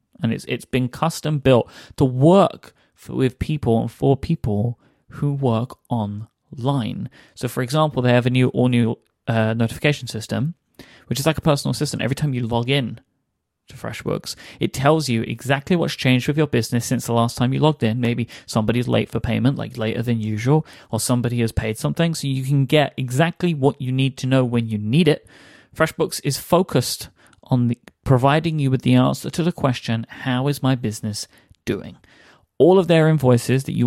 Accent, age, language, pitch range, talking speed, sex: British, 30-49, English, 120-145 Hz, 195 wpm, male